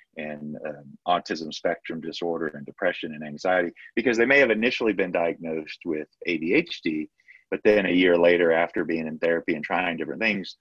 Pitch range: 80-105 Hz